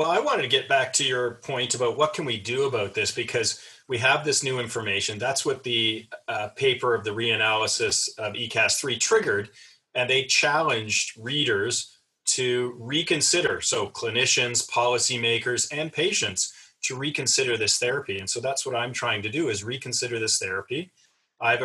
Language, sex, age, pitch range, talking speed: English, male, 30-49, 110-150 Hz, 170 wpm